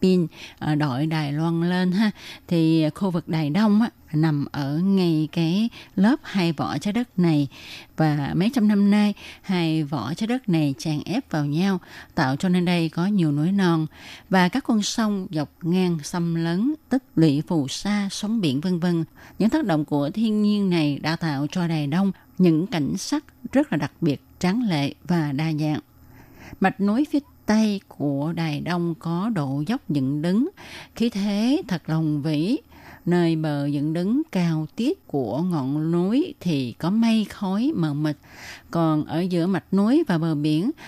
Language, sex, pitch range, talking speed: Vietnamese, female, 155-195 Hz, 180 wpm